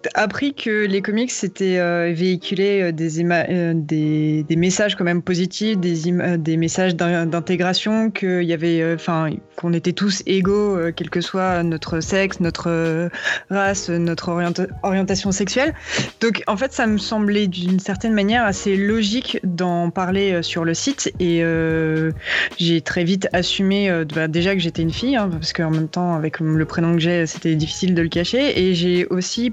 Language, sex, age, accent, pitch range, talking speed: French, female, 20-39, French, 170-205 Hz, 190 wpm